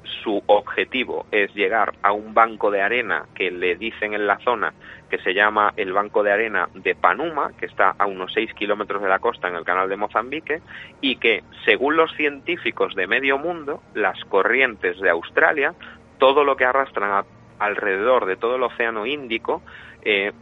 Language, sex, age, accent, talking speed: Spanish, male, 30-49, Spanish, 180 wpm